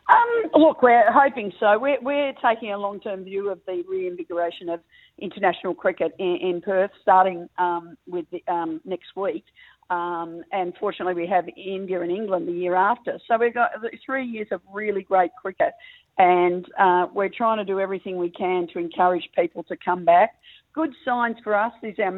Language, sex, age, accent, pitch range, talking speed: English, female, 40-59, Australian, 180-220 Hz, 185 wpm